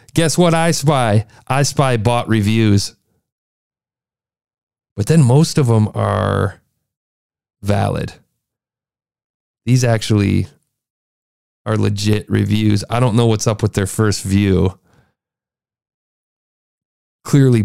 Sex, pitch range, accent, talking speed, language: male, 115-170 Hz, American, 100 wpm, English